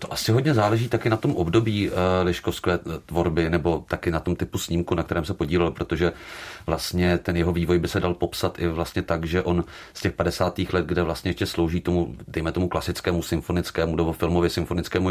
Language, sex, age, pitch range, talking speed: Czech, male, 40-59, 85-95 Hz, 200 wpm